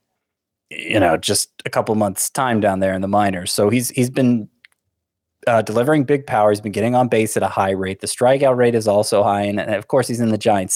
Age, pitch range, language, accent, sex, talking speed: 20-39, 100-115 Hz, English, American, male, 240 wpm